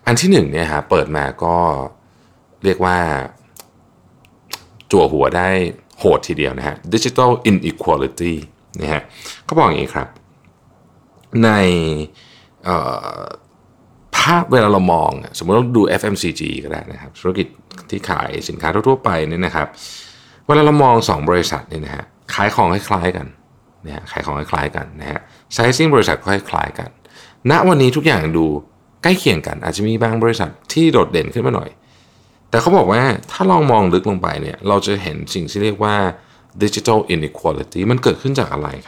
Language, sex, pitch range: Thai, male, 85-120 Hz